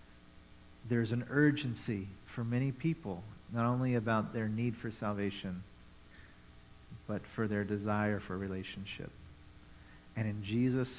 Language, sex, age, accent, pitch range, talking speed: English, male, 50-69, American, 105-145 Hz, 120 wpm